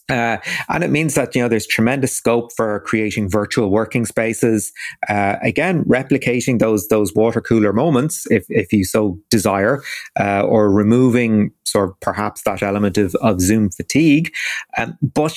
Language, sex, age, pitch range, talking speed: English, male, 30-49, 105-130 Hz, 165 wpm